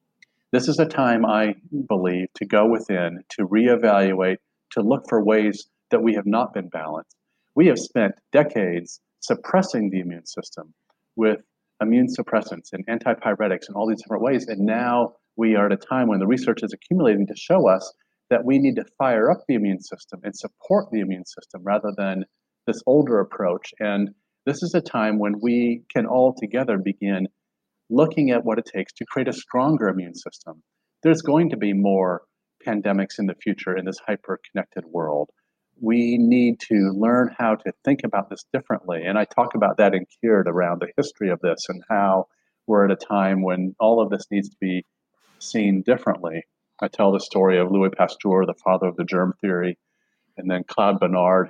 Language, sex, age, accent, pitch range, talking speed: English, male, 40-59, American, 95-115 Hz, 190 wpm